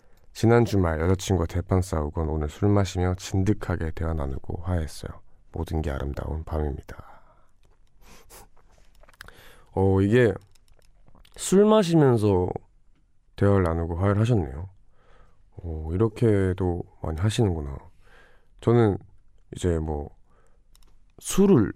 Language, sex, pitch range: Korean, male, 85-105 Hz